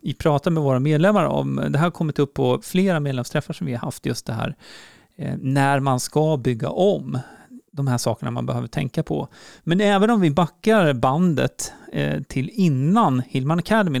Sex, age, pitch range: male, 40-59, 130-175 Hz